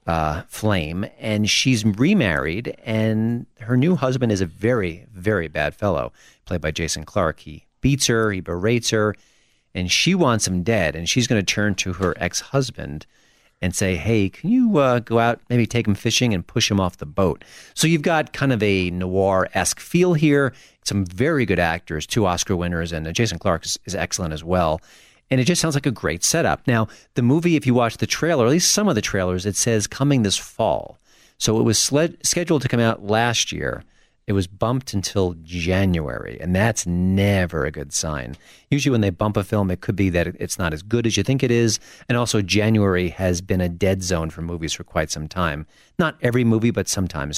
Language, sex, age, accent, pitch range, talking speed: English, male, 40-59, American, 90-120 Hz, 215 wpm